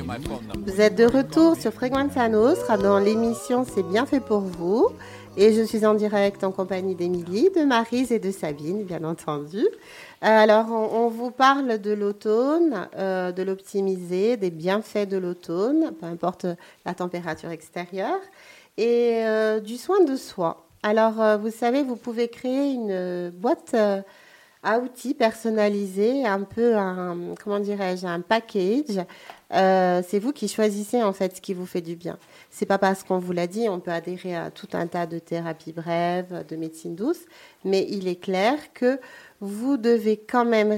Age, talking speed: 40-59, 170 wpm